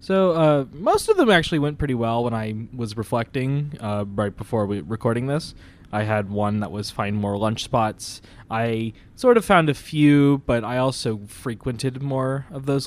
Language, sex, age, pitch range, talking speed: English, male, 20-39, 105-130 Hz, 190 wpm